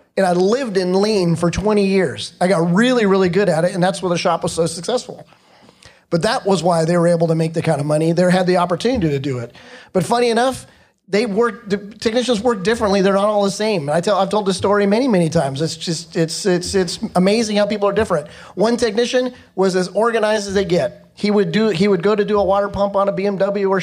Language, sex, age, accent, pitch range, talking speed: English, male, 30-49, American, 180-225 Hz, 245 wpm